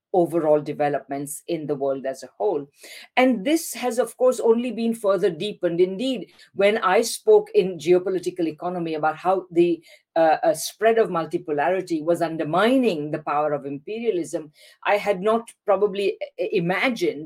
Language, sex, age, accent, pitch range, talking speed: English, female, 50-69, Indian, 155-210 Hz, 150 wpm